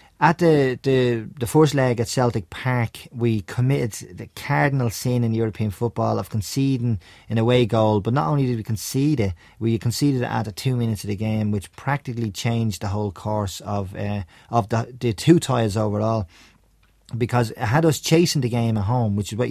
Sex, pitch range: male, 105-130 Hz